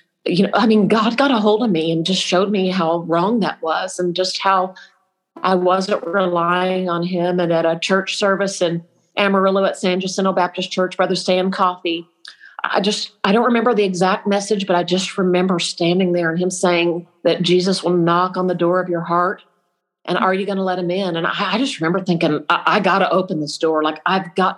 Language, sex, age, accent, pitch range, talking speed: English, female, 40-59, American, 170-200 Hz, 220 wpm